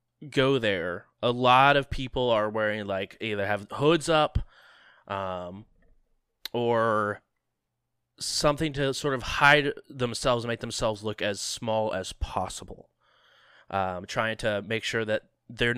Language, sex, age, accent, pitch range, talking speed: English, male, 20-39, American, 105-130 Hz, 135 wpm